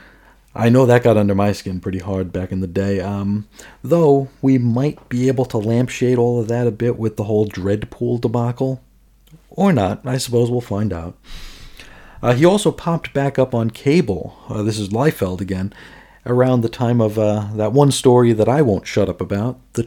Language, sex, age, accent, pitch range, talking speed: English, male, 40-59, American, 100-130 Hz, 200 wpm